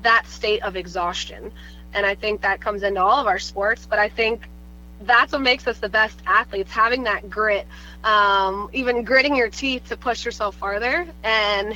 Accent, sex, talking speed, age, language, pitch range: American, female, 190 wpm, 20-39, English, 200-245 Hz